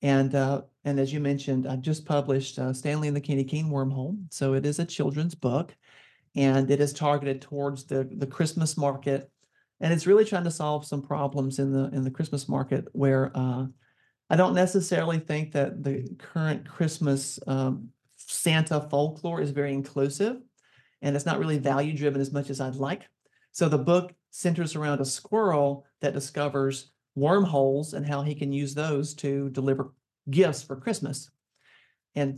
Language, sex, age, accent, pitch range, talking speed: English, male, 40-59, American, 135-155 Hz, 175 wpm